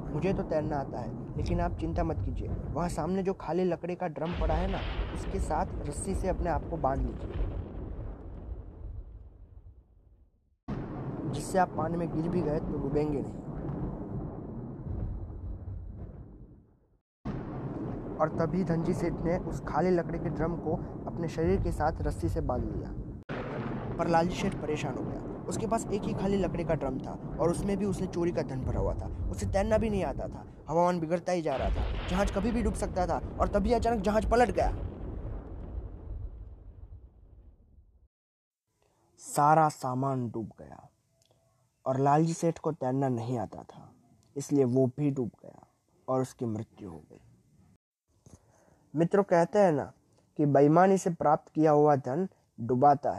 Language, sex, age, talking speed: Hindi, male, 20-39, 160 wpm